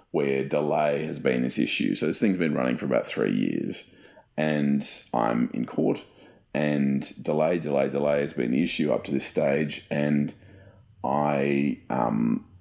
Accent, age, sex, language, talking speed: Australian, 30-49, male, English, 160 wpm